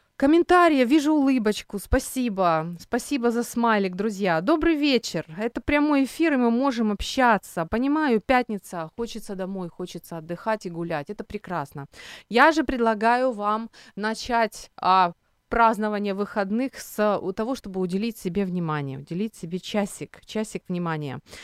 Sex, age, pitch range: female, 30-49, 175-240 Hz